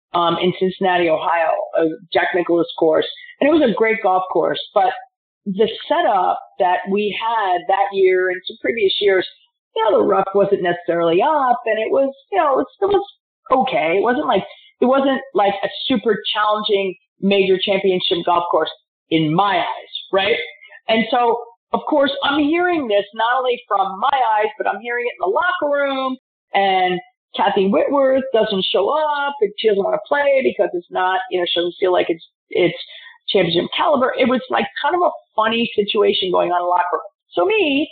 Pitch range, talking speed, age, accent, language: 190-285 Hz, 190 wpm, 40-59, American, English